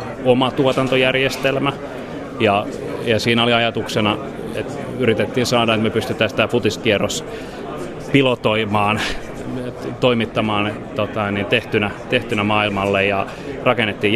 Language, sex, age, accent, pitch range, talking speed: Finnish, male, 30-49, native, 105-120 Hz, 95 wpm